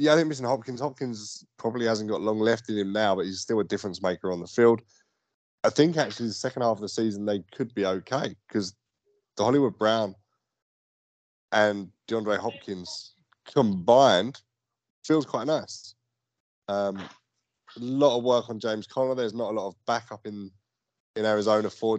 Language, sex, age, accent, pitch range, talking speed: English, male, 20-39, British, 95-115 Hz, 175 wpm